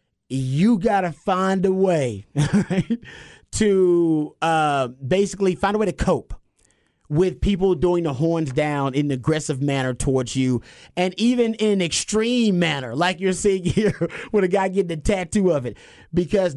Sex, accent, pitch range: male, American, 150-200 Hz